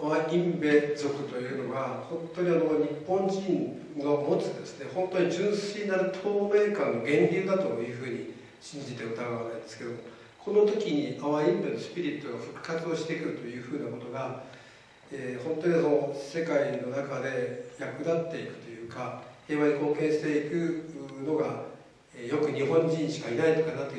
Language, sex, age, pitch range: Japanese, male, 50-69, 125-165 Hz